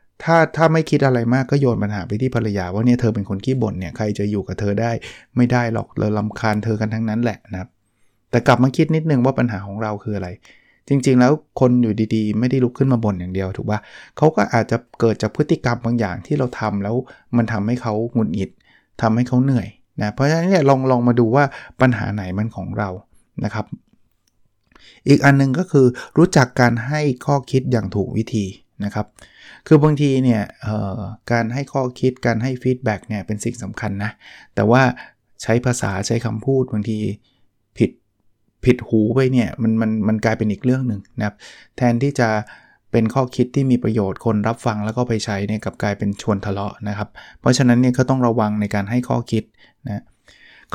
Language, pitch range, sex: Thai, 105-130 Hz, male